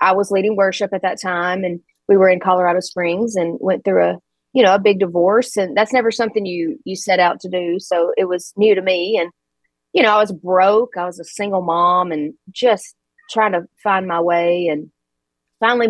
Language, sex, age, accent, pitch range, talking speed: English, female, 30-49, American, 175-210 Hz, 220 wpm